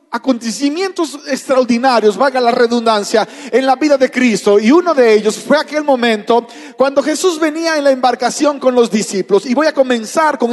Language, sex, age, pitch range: Spanish, male, 40-59, 240-295 Hz